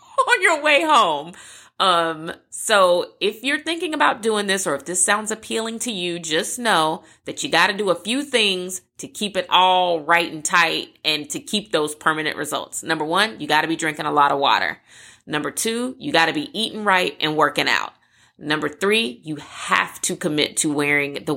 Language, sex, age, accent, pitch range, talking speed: English, female, 30-49, American, 155-215 Hz, 205 wpm